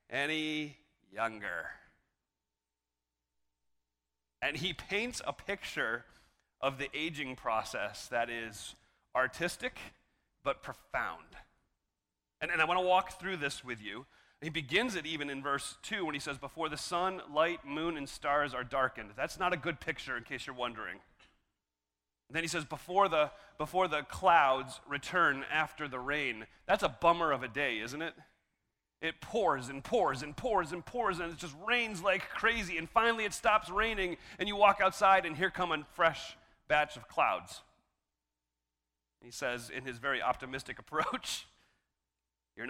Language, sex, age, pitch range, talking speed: English, male, 40-59, 110-170 Hz, 155 wpm